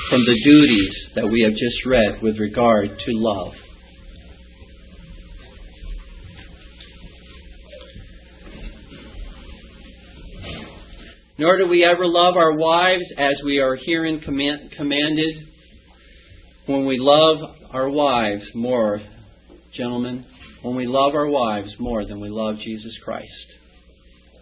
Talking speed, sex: 105 wpm, male